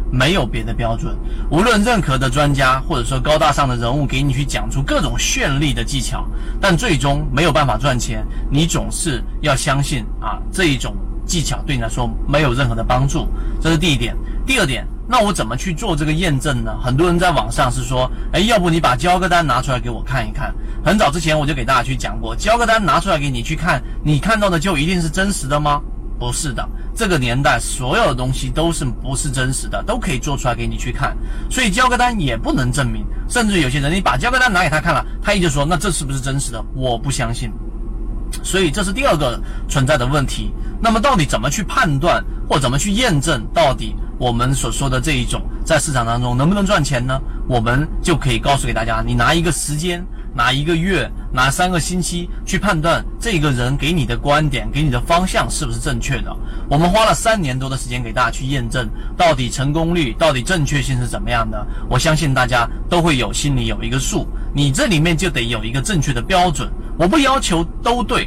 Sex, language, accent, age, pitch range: male, Chinese, native, 30-49, 120-165 Hz